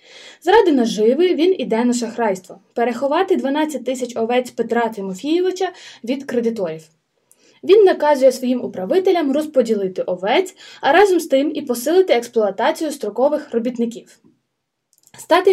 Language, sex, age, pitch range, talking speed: Ukrainian, female, 20-39, 225-320 Hz, 120 wpm